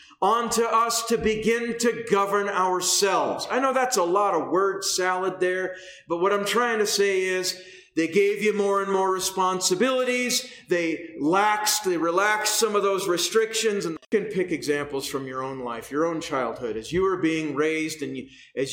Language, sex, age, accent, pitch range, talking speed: English, male, 40-59, American, 170-255 Hz, 185 wpm